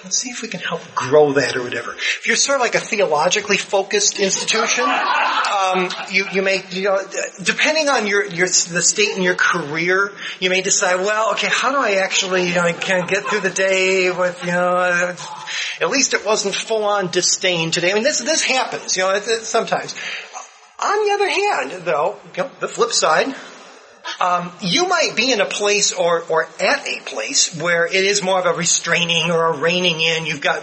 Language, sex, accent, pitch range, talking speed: English, male, American, 170-205 Hz, 205 wpm